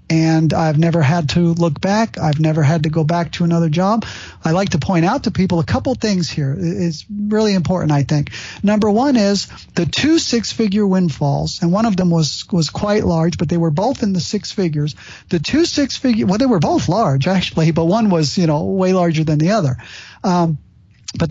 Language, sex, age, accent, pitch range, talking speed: English, male, 50-69, American, 155-205 Hz, 215 wpm